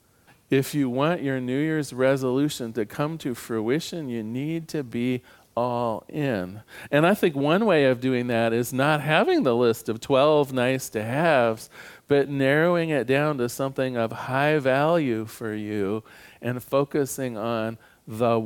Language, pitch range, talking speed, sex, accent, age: English, 110-145 Hz, 155 wpm, male, American, 40-59